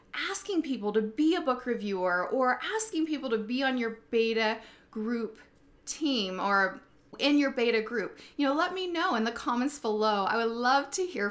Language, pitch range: English, 210-280 Hz